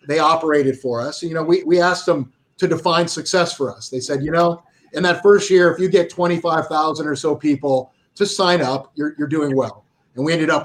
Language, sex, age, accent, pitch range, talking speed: English, male, 40-59, American, 135-170 Hz, 230 wpm